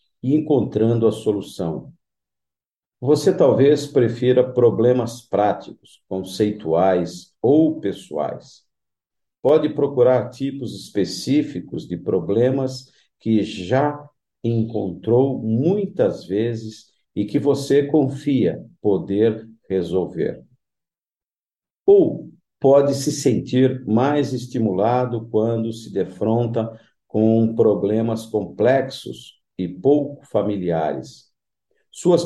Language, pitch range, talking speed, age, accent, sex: Portuguese, 100-135 Hz, 80 wpm, 50-69, Brazilian, male